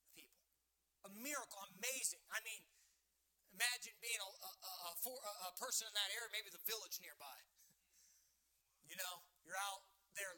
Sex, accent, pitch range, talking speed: male, American, 175-240 Hz, 155 wpm